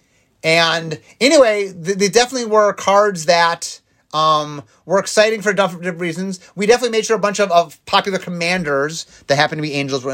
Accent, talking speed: American, 180 wpm